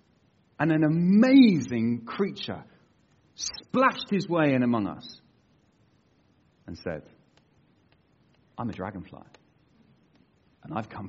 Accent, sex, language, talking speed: British, male, English, 95 wpm